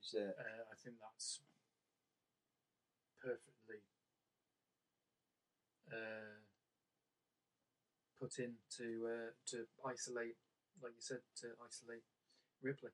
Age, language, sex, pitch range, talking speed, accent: 30-49, English, male, 110-135 Hz, 85 wpm, British